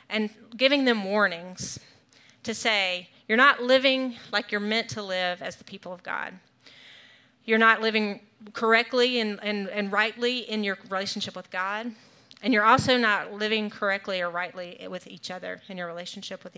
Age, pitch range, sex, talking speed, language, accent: 30-49, 195-235 Hz, female, 170 wpm, English, American